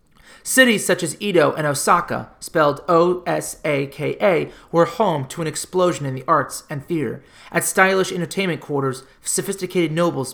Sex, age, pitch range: male, 30-49, 140-175 Hz